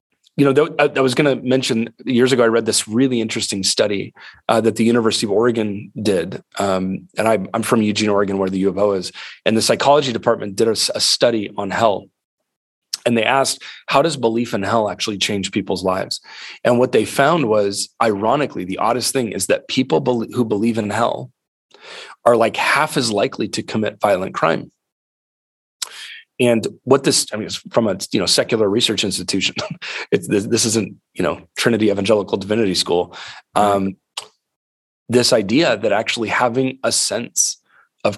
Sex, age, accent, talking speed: male, 30-49, American, 175 wpm